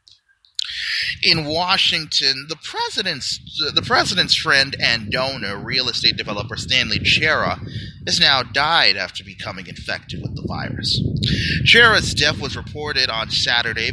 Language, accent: English, American